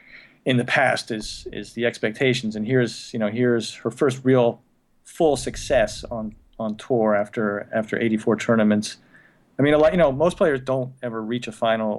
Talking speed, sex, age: 190 wpm, male, 40-59